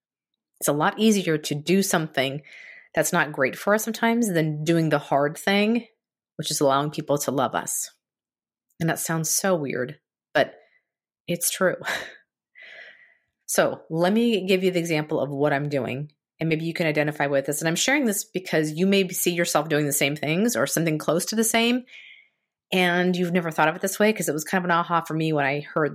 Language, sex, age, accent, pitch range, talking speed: English, female, 30-49, American, 150-185 Hz, 210 wpm